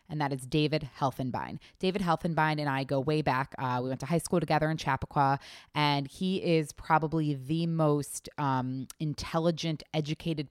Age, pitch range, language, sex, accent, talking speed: 20-39, 140-175 Hz, English, female, American, 170 wpm